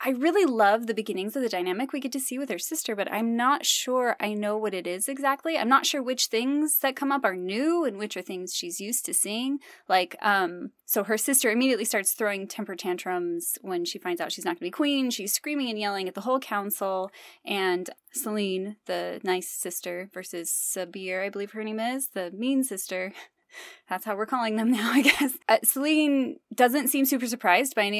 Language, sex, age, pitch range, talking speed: English, female, 10-29, 200-285 Hz, 220 wpm